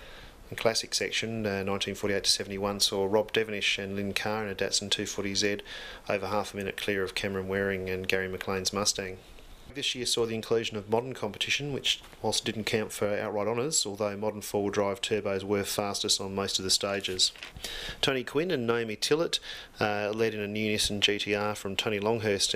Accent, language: Australian, English